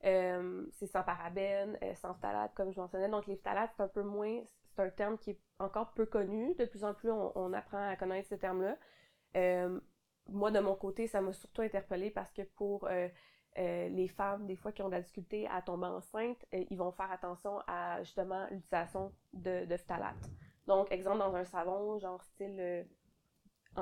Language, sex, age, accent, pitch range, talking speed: French, female, 20-39, Canadian, 180-200 Hz, 200 wpm